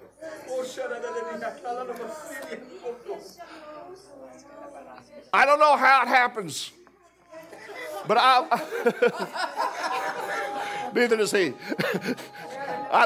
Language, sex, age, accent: English, male, 50-69, American